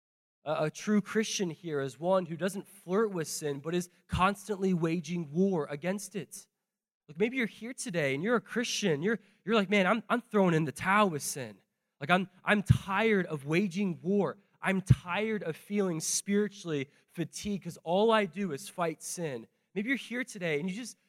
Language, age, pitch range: English, 20-39, 165-210 Hz